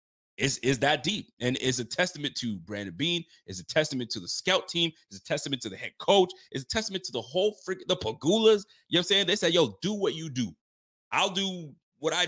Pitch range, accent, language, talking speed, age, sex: 120-165 Hz, American, English, 245 wpm, 30-49, male